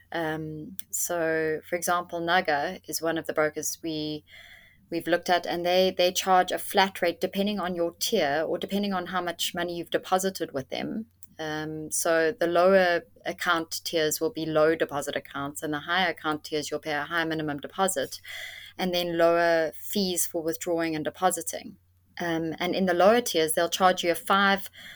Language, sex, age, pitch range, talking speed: English, female, 20-39, 155-185 Hz, 185 wpm